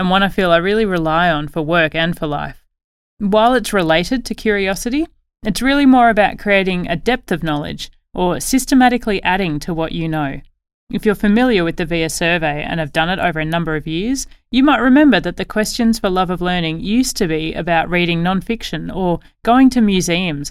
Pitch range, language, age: 165-220 Hz, English, 30-49